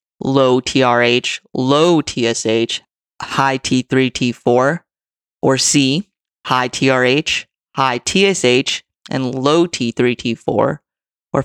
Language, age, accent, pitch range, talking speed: English, 20-39, American, 130-150 Hz, 95 wpm